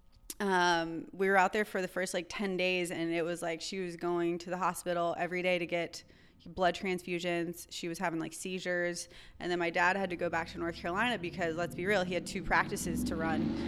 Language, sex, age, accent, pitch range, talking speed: English, female, 20-39, American, 165-180 Hz, 235 wpm